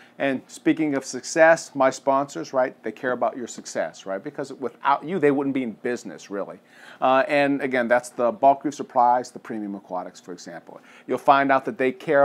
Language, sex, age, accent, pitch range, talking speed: English, male, 40-59, American, 115-145 Hz, 200 wpm